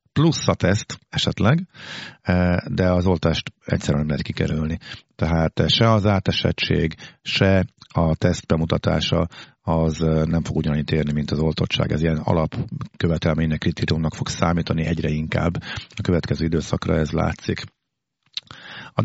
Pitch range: 80-105 Hz